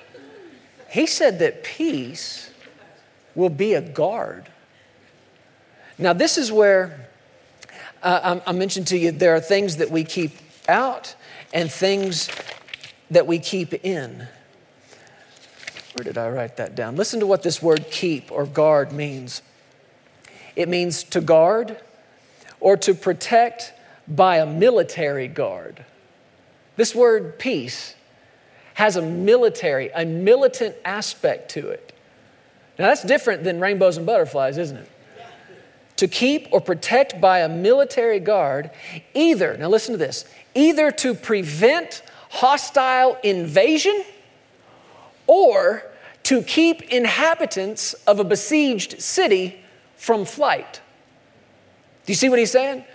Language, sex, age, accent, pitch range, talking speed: English, male, 40-59, American, 170-255 Hz, 125 wpm